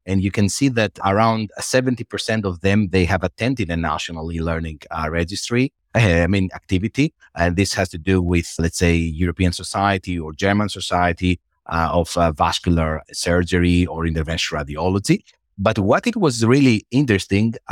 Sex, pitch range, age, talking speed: male, 90-115 Hz, 30-49, 160 wpm